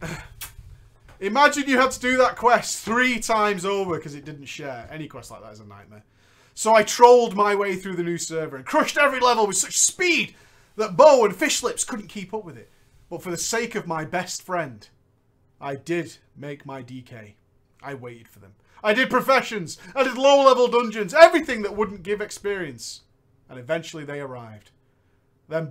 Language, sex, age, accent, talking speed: English, male, 30-49, British, 190 wpm